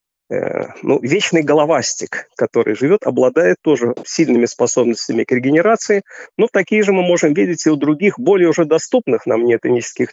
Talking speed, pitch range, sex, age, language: 150 wpm, 125-200 Hz, male, 40-59, Russian